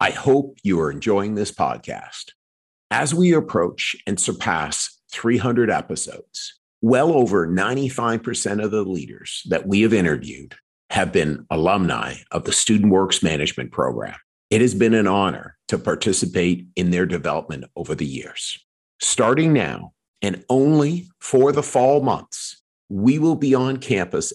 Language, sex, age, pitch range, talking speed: English, male, 50-69, 90-130 Hz, 145 wpm